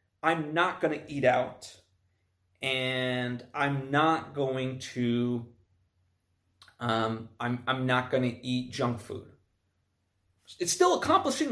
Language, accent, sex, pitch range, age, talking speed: English, American, male, 115-155 Hz, 30-49, 120 wpm